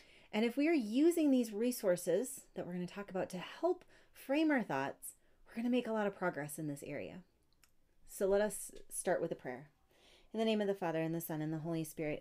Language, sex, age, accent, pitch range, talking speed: English, female, 30-49, American, 150-200 Hz, 240 wpm